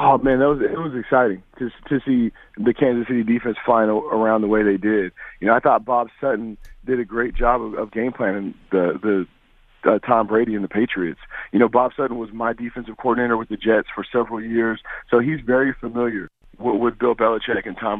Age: 40-59